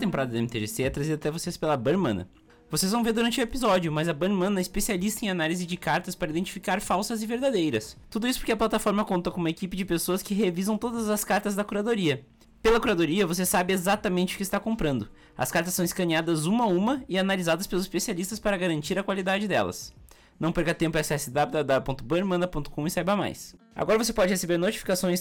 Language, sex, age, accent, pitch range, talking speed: Portuguese, male, 20-39, Brazilian, 150-200 Hz, 200 wpm